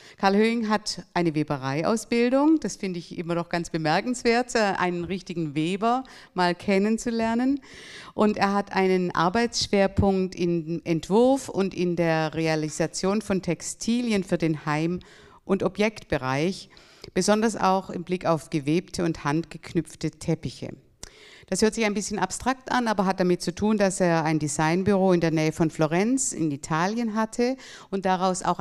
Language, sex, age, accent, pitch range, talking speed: German, female, 60-79, German, 165-210 Hz, 150 wpm